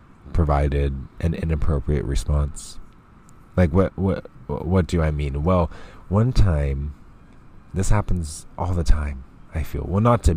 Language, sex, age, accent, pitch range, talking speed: English, male, 20-39, American, 80-105 Hz, 140 wpm